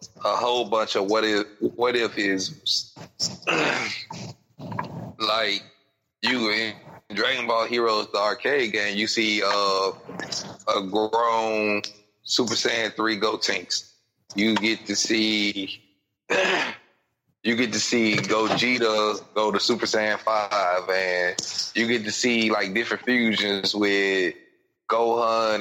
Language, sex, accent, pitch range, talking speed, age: English, male, American, 100-115 Hz, 120 wpm, 30-49